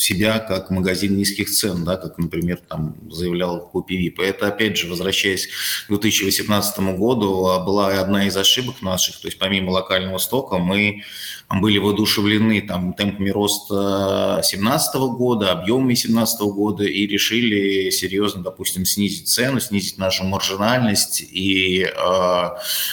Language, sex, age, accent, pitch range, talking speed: Russian, male, 20-39, native, 95-105 Hz, 130 wpm